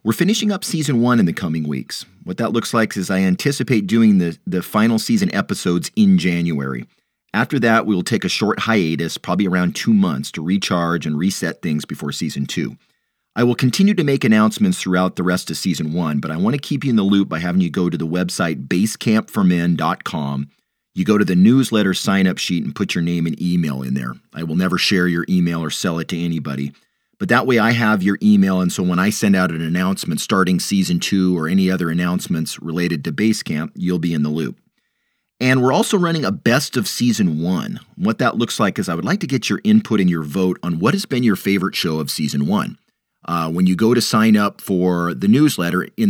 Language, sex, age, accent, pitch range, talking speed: English, male, 40-59, American, 85-125 Hz, 225 wpm